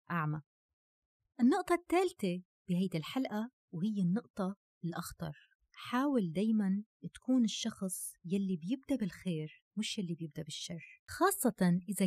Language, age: Arabic, 20-39